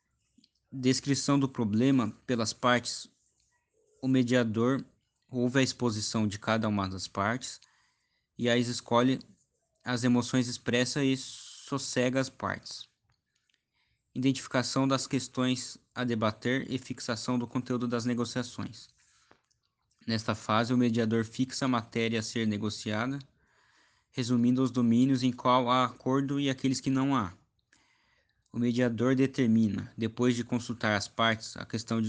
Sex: male